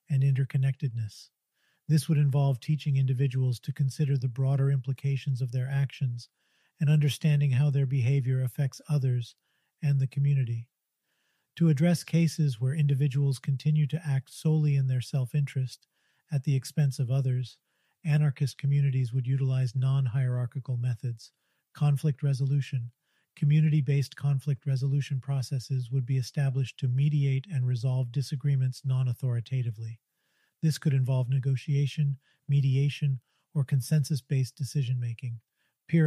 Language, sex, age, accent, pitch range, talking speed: English, male, 40-59, American, 130-145 Hz, 120 wpm